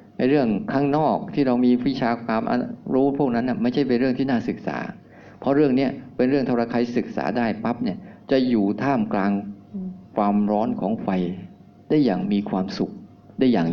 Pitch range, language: 100-130 Hz, Thai